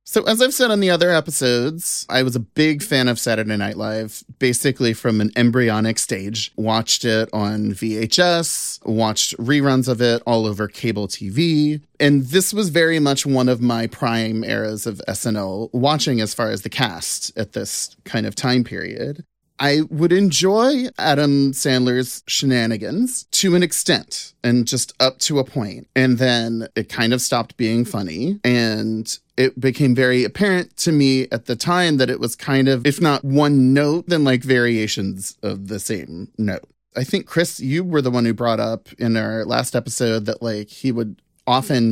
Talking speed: 180 wpm